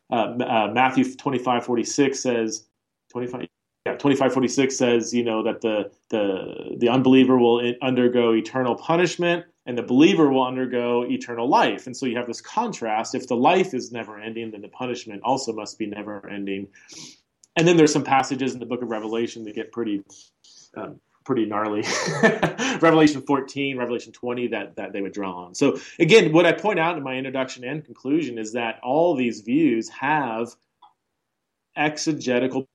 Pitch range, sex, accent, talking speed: 115-145 Hz, male, American, 170 wpm